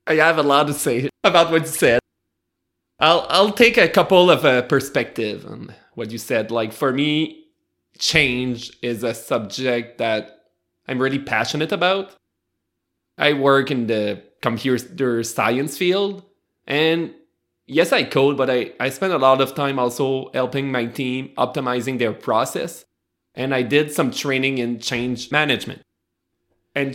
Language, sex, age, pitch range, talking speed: English, male, 20-39, 120-150 Hz, 155 wpm